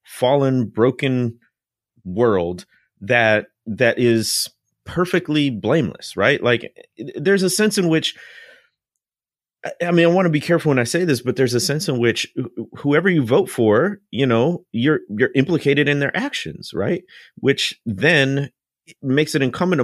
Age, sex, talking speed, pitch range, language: 30-49, male, 155 wpm, 110-140 Hz, English